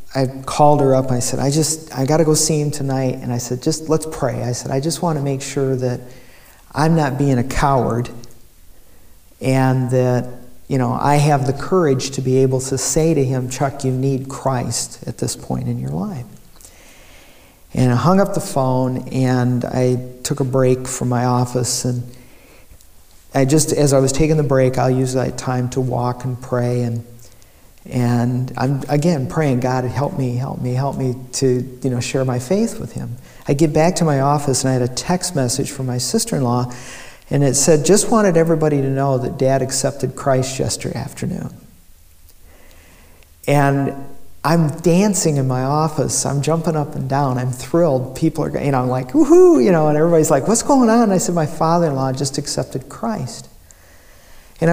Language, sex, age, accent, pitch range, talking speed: English, male, 50-69, American, 125-150 Hz, 195 wpm